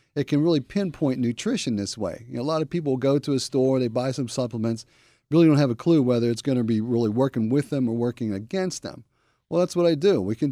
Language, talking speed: English, 250 wpm